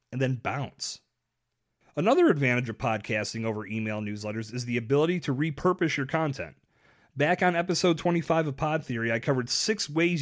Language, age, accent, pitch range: English, 30-49, American, 120-165 Hz